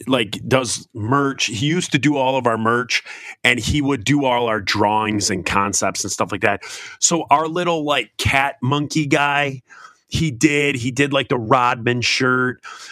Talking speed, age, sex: 180 wpm, 30-49, male